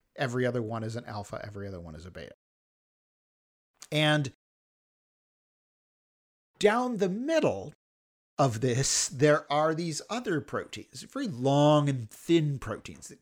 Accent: American